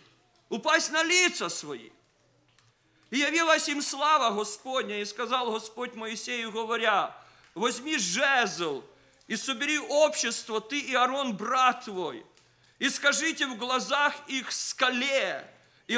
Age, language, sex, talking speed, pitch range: 40-59, English, male, 115 wpm, 210-260 Hz